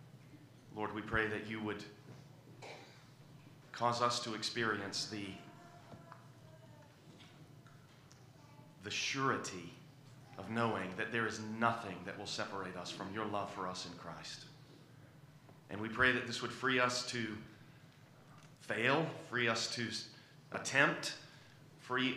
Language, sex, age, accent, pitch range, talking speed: English, male, 40-59, American, 110-140 Hz, 120 wpm